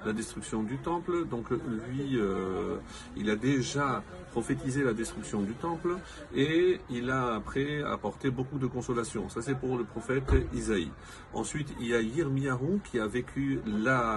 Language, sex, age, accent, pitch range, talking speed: French, male, 40-59, French, 115-150 Hz, 160 wpm